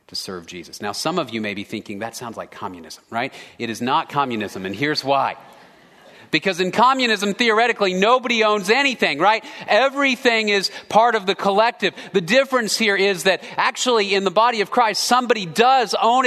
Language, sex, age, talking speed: English, male, 40-59, 185 wpm